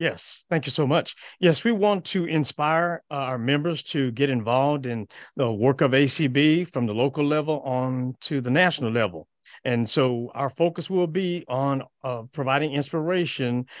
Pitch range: 125-155 Hz